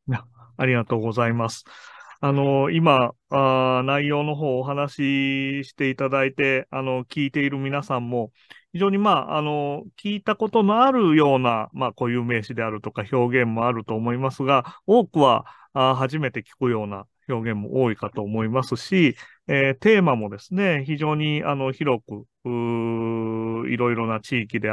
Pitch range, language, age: 120-155 Hz, Japanese, 30-49